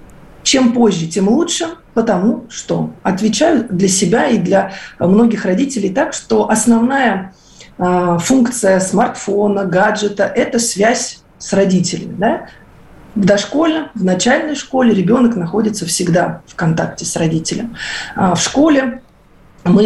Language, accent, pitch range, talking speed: Russian, native, 190-235 Hz, 115 wpm